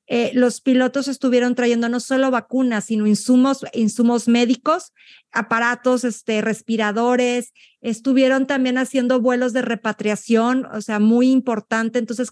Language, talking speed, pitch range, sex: Spanish, 125 wpm, 220-255 Hz, female